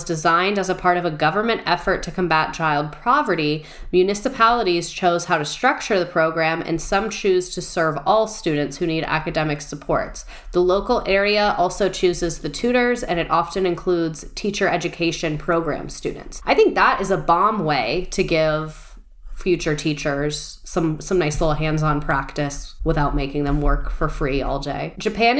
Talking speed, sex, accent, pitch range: 170 wpm, female, American, 160-210 Hz